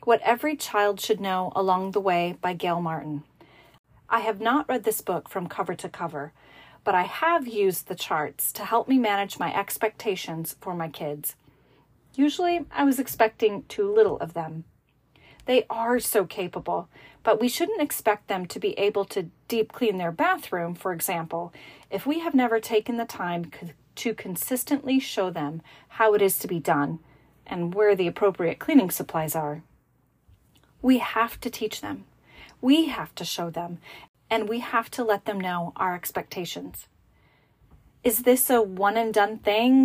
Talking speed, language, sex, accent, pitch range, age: 170 wpm, English, female, American, 175-230 Hz, 30-49